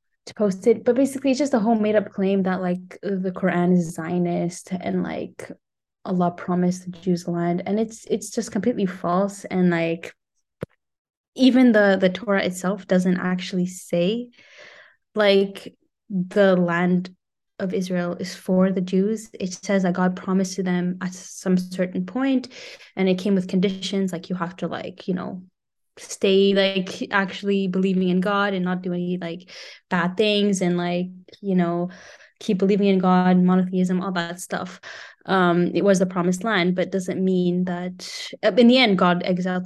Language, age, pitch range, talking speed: English, 10-29, 180-195 Hz, 170 wpm